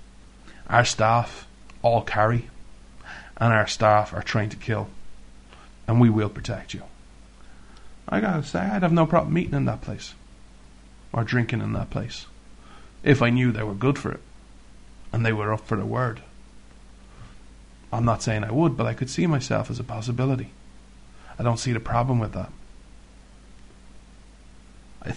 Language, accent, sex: English, Irish, male